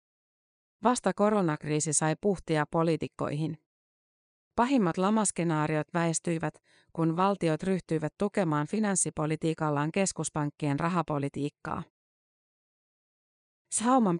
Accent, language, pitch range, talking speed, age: native, Finnish, 155-185 Hz, 70 wpm, 30-49